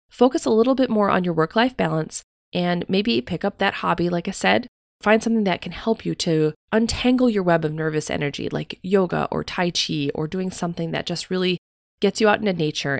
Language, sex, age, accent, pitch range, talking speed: English, female, 20-39, American, 155-215 Hz, 215 wpm